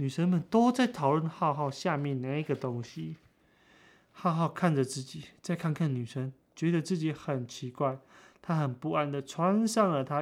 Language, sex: Chinese, male